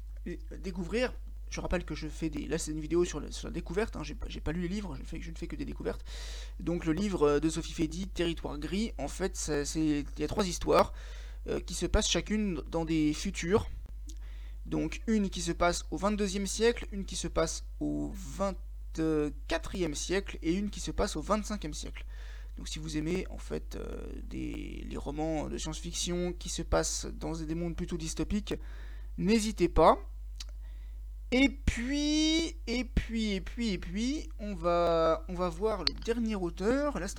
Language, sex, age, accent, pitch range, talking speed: French, male, 20-39, French, 155-215 Hz, 190 wpm